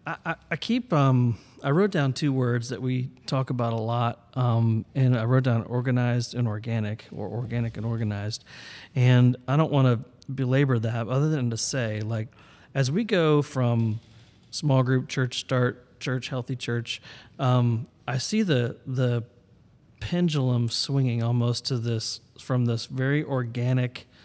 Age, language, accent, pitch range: 30-49, English, American, 115-135 Hz